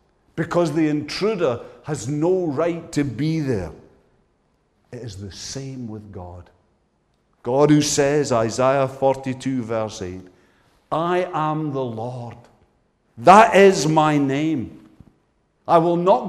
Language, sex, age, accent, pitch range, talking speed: English, male, 50-69, British, 100-155 Hz, 120 wpm